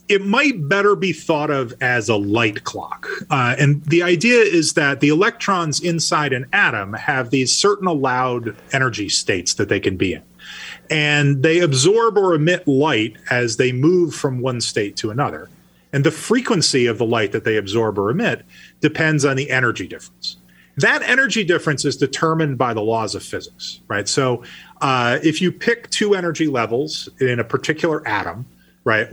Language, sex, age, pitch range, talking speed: English, male, 30-49, 115-160 Hz, 175 wpm